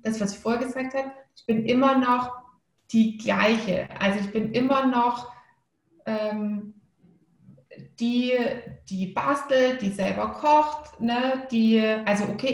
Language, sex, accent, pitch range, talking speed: German, female, German, 200-240 Hz, 135 wpm